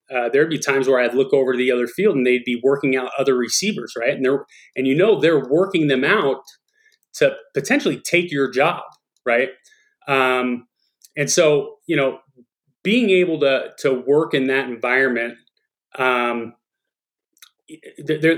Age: 30-49